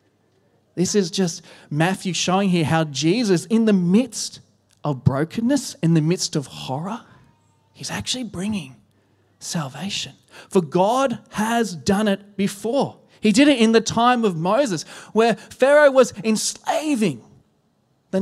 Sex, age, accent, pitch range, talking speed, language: male, 20-39, Australian, 165-245 Hz, 135 wpm, English